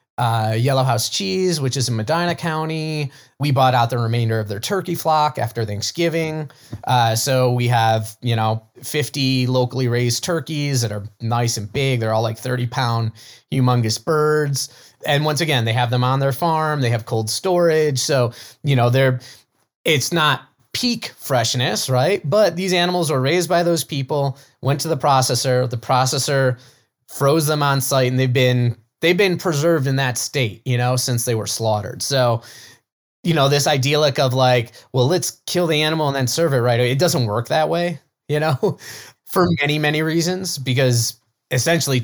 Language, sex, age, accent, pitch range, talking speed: English, male, 20-39, American, 120-150 Hz, 185 wpm